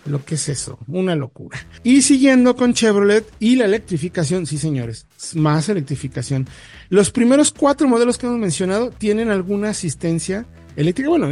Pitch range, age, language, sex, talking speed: 145-200 Hz, 40-59, Spanish, male, 155 wpm